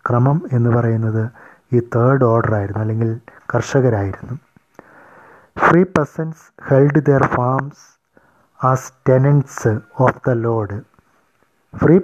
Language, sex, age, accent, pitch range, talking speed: English, male, 30-49, Indian, 120-145 Hz, 105 wpm